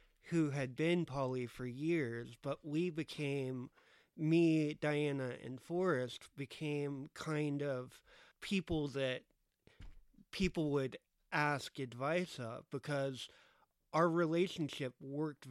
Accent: American